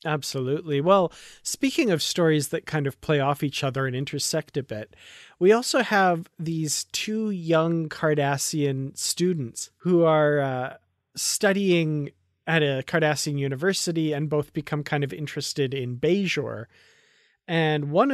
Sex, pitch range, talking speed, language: male, 135-165 Hz, 140 wpm, English